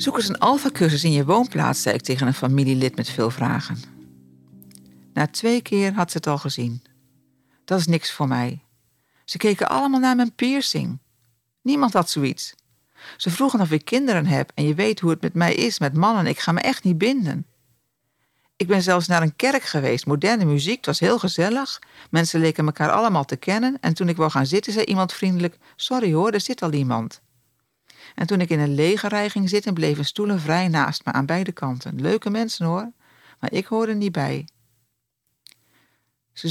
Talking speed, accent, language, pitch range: 195 wpm, Dutch, Dutch, 135-200 Hz